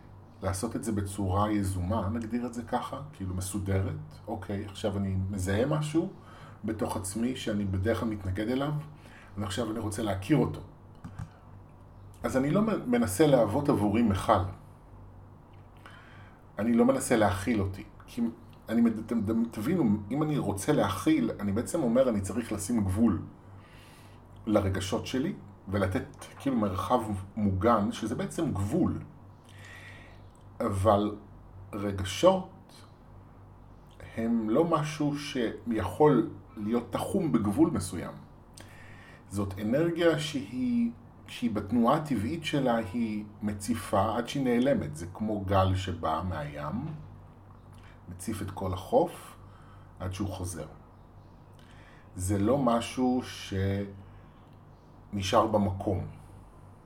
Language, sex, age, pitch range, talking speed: Hebrew, male, 30-49, 95-115 Hz, 110 wpm